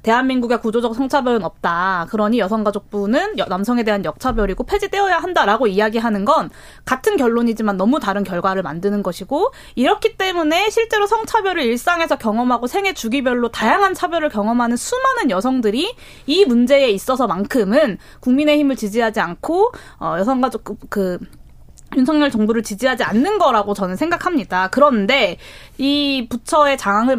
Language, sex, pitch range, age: Korean, female, 210-295 Hz, 20-39